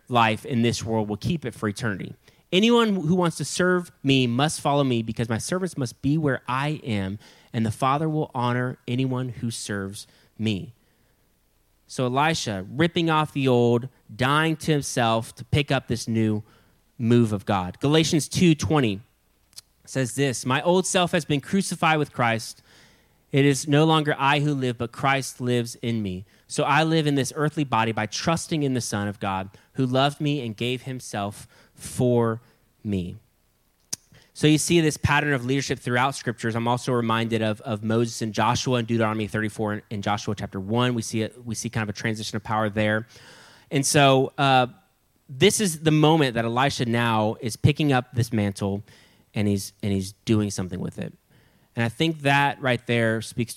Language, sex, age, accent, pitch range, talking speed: English, male, 20-39, American, 110-140 Hz, 185 wpm